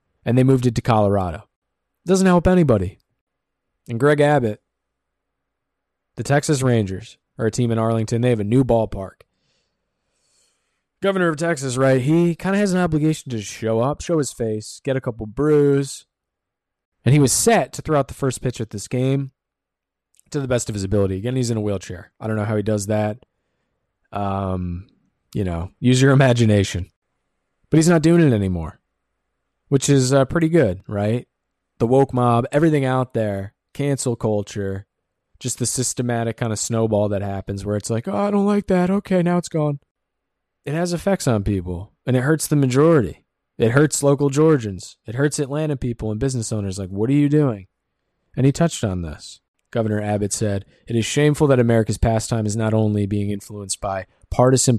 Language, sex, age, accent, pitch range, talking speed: English, male, 20-39, American, 100-140 Hz, 185 wpm